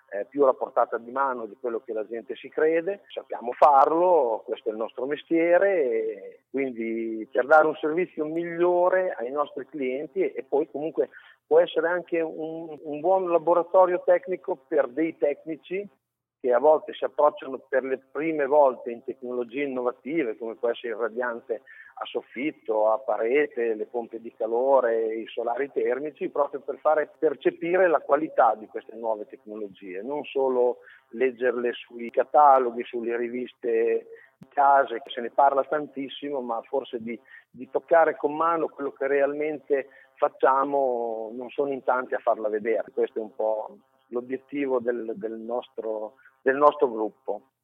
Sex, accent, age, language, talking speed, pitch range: male, native, 40-59, Italian, 155 wpm, 120-175 Hz